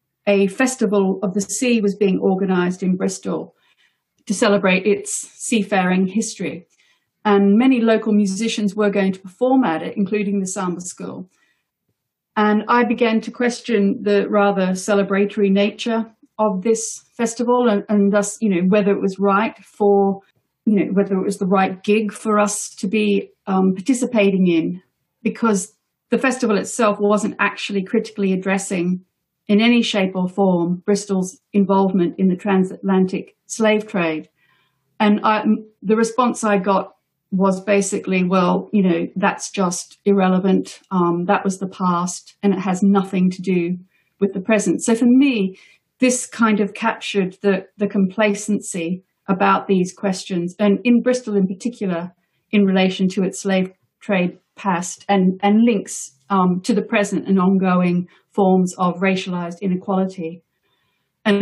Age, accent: 40-59, British